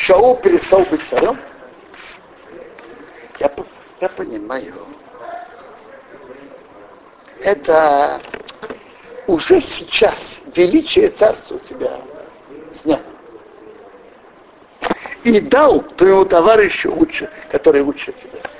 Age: 60-79